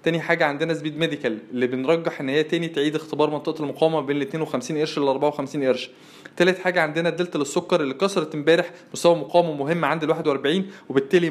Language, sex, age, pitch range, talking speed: Arabic, male, 20-39, 140-170 Hz, 190 wpm